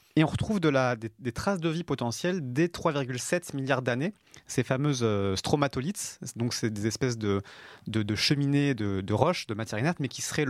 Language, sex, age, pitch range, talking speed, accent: French, male, 30-49, 110-140 Hz, 200 wpm, French